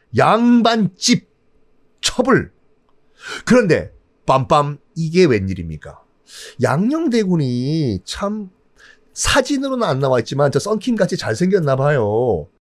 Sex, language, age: male, Korean, 40-59